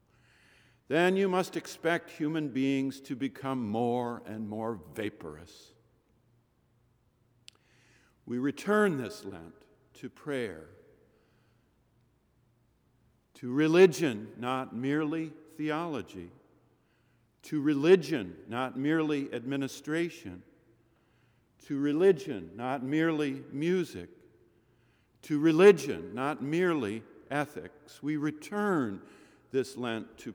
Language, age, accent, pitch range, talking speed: English, 50-69, American, 120-165 Hz, 85 wpm